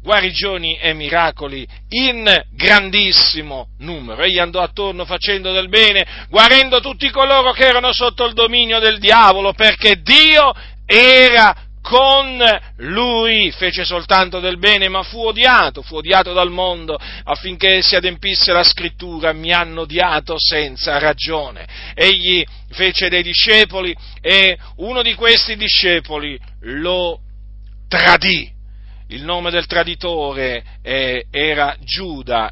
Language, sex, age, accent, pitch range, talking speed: Italian, male, 40-59, native, 145-200 Hz, 120 wpm